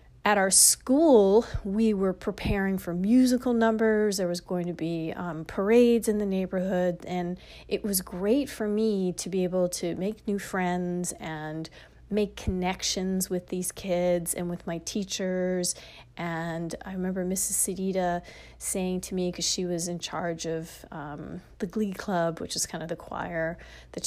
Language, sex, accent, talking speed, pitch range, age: English, female, American, 165 wpm, 175-205 Hz, 30-49